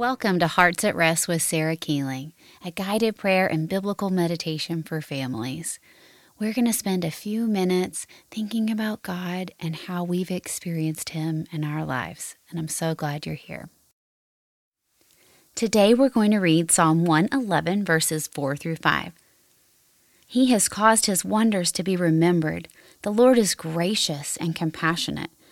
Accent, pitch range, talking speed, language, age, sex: American, 165-215 Hz, 155 wpm, English, 30-49, female